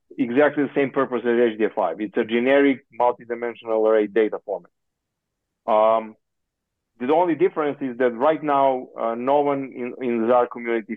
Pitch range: 110-135 Hz